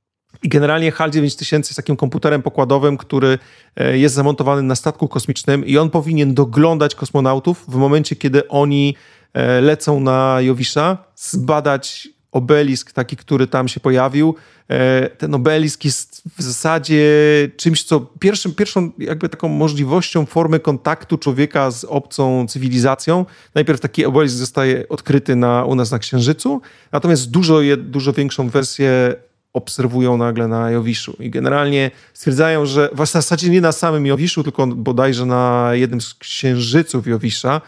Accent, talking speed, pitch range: native, 140 wpm, 130-155 Hz